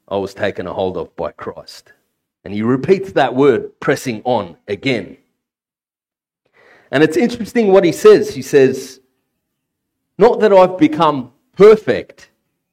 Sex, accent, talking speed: male, Australian, 135 wpm